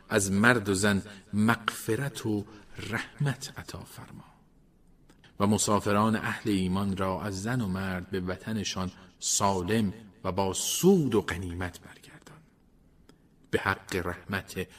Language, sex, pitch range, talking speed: Persian, male, 90-110 Hz, 120 wpm